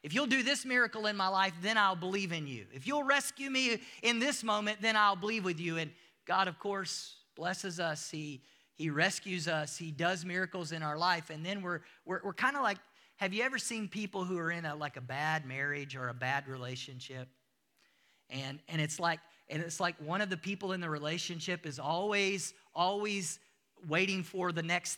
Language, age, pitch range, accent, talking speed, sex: English, 40-59, 160-225 Hz, American, 210 wpm, male